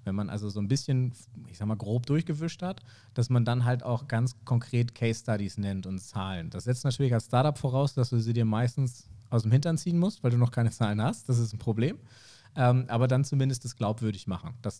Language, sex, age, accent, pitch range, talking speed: German, male, 40-59, German, 110-125 Hz, 235 wpm